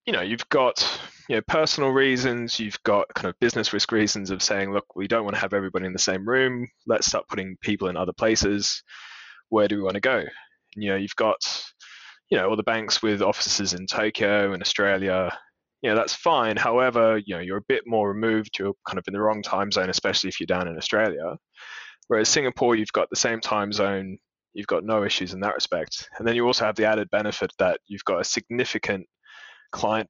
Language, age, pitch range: English, 20-39, 95-110 Hz